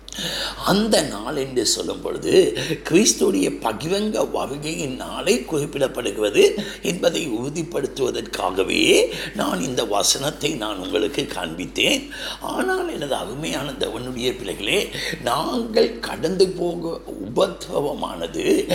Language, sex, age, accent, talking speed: Tamil, male, 60-79, native, 80 wpm